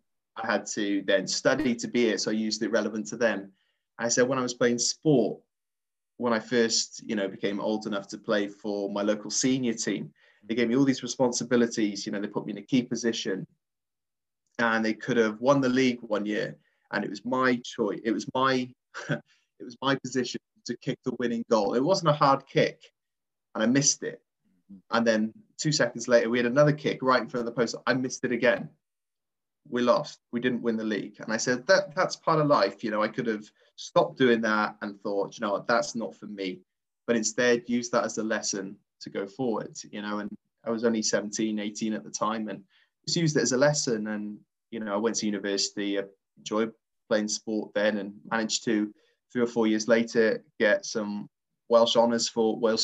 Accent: British